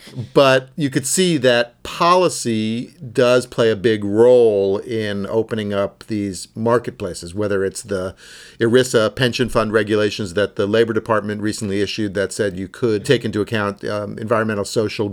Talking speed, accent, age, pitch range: 155 wpm, American, 50-69, 100-120 Hz